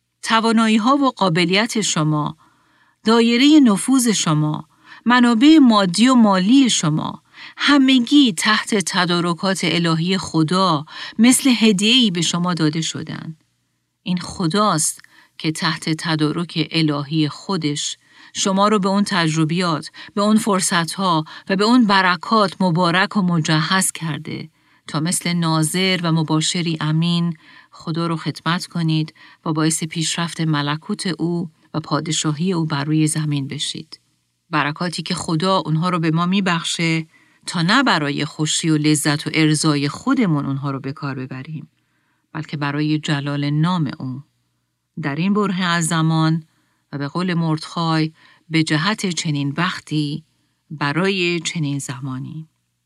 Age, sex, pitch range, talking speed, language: 40-59, female, 155-190 Hz, 130 wpm, Persian